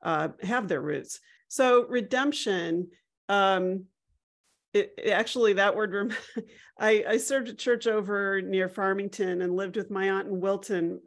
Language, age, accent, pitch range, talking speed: English, 40-59, American, 185-225 Hz, 135 wpm